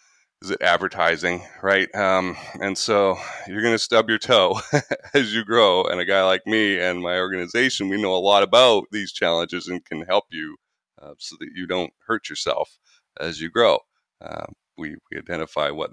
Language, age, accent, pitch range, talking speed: English, 30-49, American, 95-115 Hz, 190 wpm